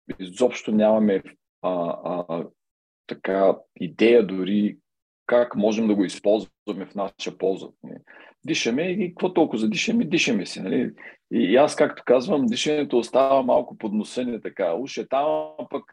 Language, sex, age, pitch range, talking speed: Bulgarian, male, 40-59, 95-120 Hz, 140 wpm